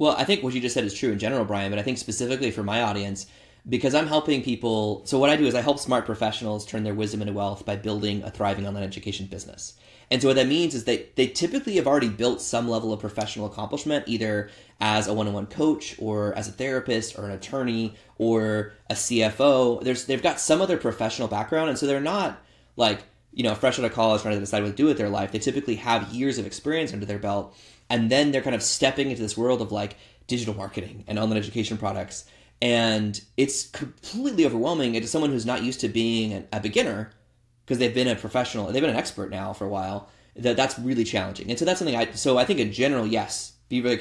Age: 20-39